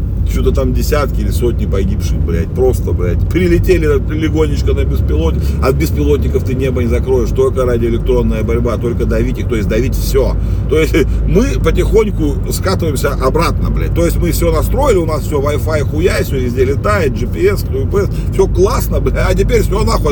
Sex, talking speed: male, 175 wpm